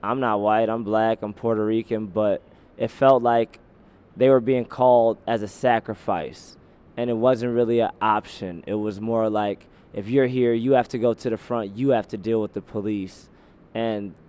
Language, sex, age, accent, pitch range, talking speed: English, male, 20-39, American, 105-120 Hz, 195 wpm